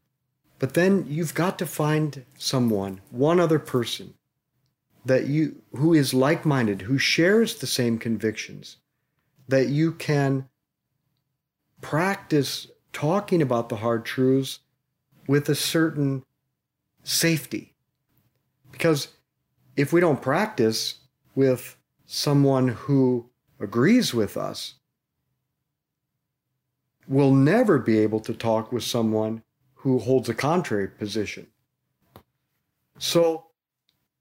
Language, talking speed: English, 100 wpm